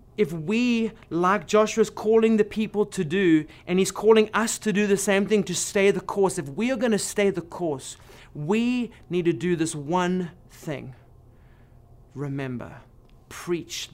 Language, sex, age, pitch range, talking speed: English, male, 30-49, 160-215 Hz, 170 wpm